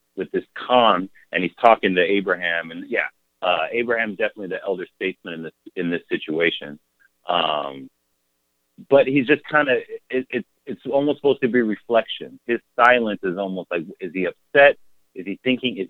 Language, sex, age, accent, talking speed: English, male, 30-49, American, 175 wpm